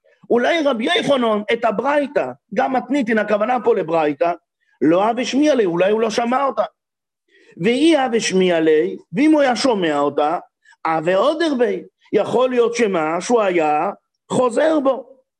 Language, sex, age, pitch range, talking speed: English, male, 50-69, 200-265 Hz, 145 wpm